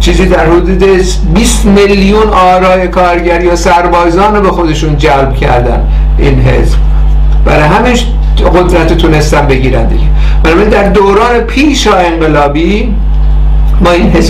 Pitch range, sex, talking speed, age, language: 160-210 Hz, male, 120 wpm, 60-79, Persian